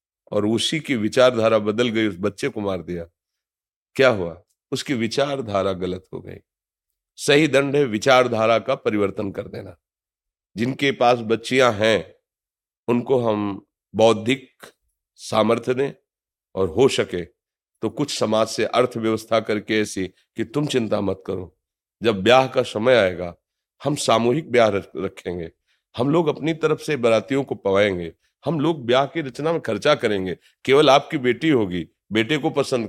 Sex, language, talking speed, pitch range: male, Hindi, 150 wpm, 110-145 Hz